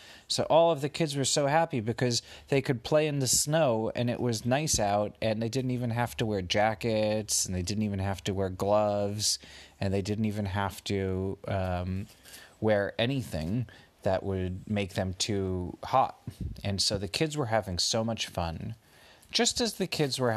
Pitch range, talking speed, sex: 95-120 Hz, 190 wpm, male